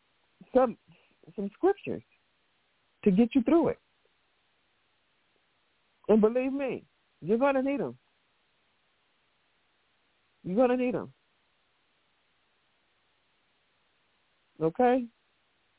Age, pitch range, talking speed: 60-79, 170-215 Hz, 85 wpm